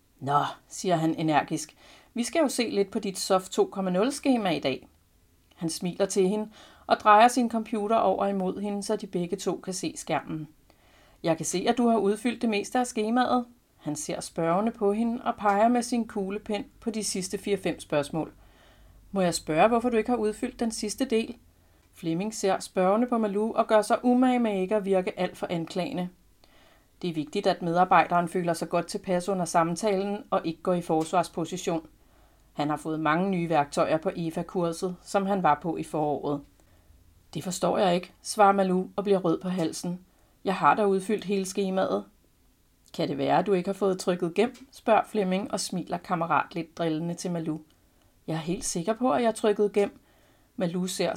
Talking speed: 190 wpm